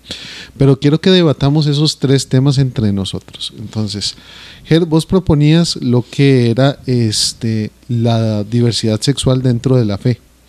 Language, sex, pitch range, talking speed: Spanish, male, 115-145 Hz, 135 wpm